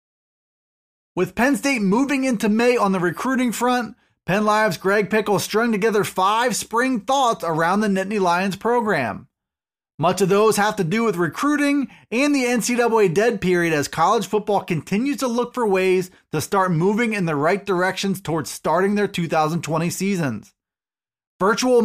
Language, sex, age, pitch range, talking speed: English, male, 30-49, 180-235 Hz, 160 wpm